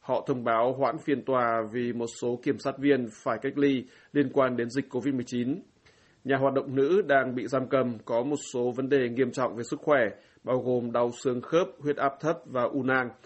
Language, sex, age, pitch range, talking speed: Vietnamese, male, 20-39, 125-140 Hz, 220 wpm